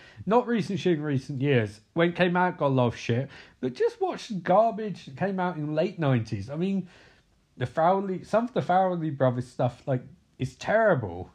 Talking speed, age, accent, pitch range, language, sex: 205 wpm, 40-59, British, 130-190 Hz, English, male